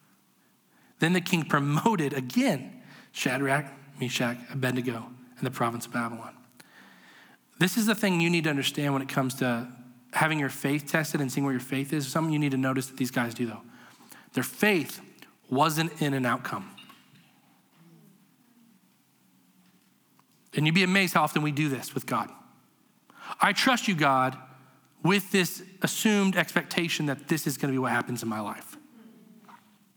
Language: English